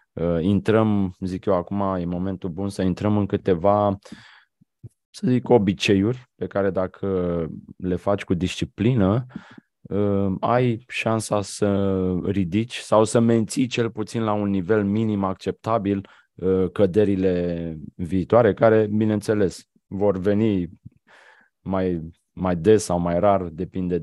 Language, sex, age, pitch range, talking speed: Romanian, male, 20-39, 90-105 Hz, 120 wpm